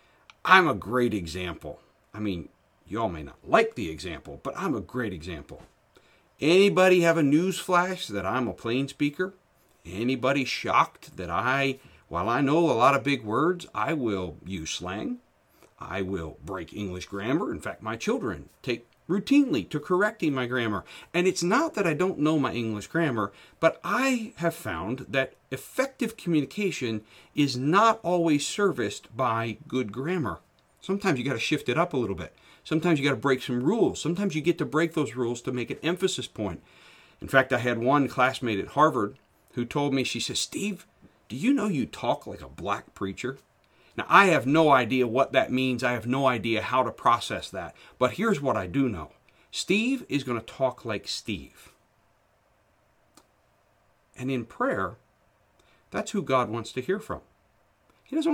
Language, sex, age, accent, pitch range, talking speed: English, male, 50-69, American, 120-175 Hz, 180 wpm